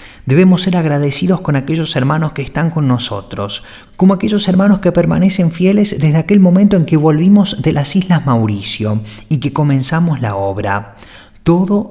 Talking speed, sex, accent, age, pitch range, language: 160 wpm, male, Argentinian, 20-39, 105-175 Hz, French